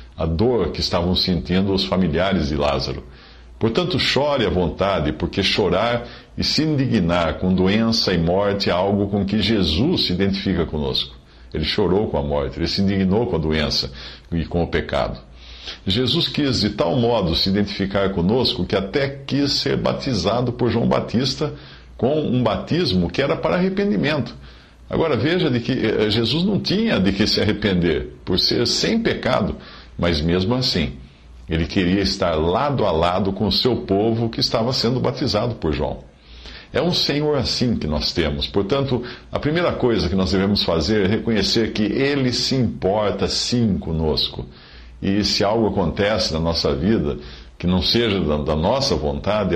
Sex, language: male, English